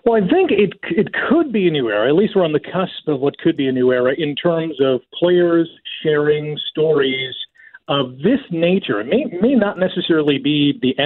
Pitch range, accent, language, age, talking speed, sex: 135-170 Hz, American, English, 40-59, 210 wpm, male